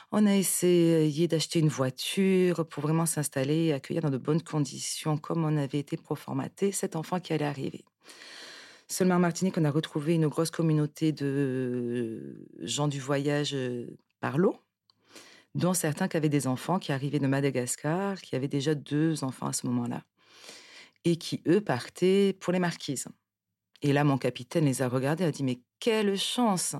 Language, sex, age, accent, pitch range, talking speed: French, female, 40-59, French, 140-175 Hz, 175 wpm